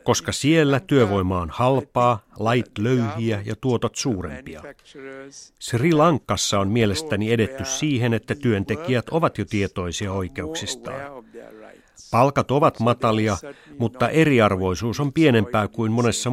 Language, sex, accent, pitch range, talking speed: Finnish, male, native, 105-130 Hz, 115 wpm